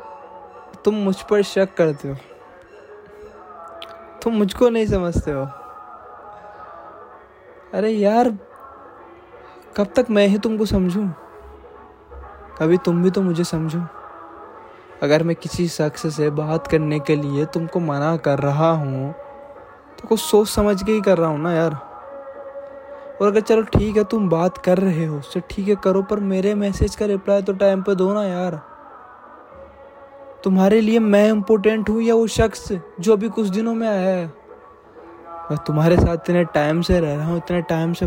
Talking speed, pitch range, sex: 155 wpm, 160-210 Hz, male